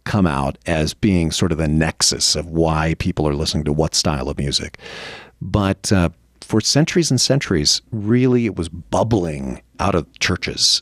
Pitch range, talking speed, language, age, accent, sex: 80-110 Hz, 170 wpm, English, 40-59, American, male